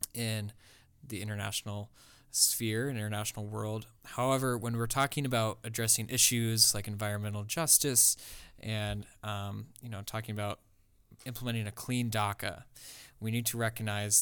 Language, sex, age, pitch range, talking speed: English, male, 20-39, 105-115 Hz, 130 wpm